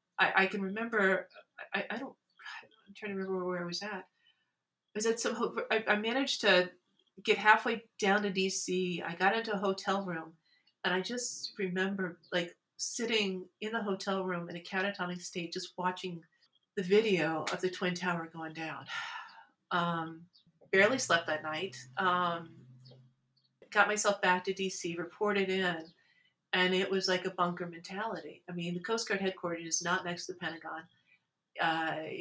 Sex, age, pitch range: female, 40-59, 175-205 Hz